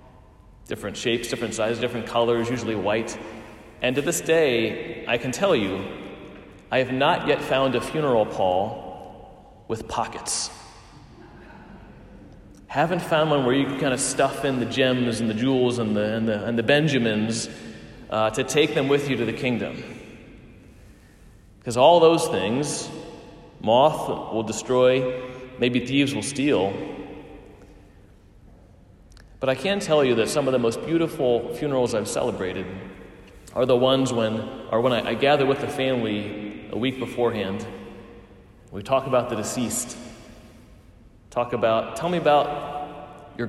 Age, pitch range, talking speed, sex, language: 30-49, 110-135 Hz, 150 wpm, male, English